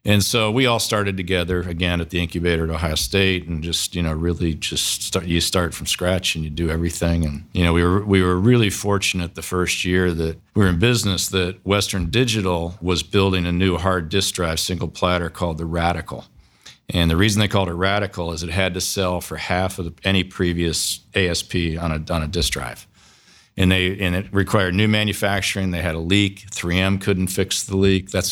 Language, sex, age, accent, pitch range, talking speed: English, male, 50-69, American, 85-100 Hz, 215 wpm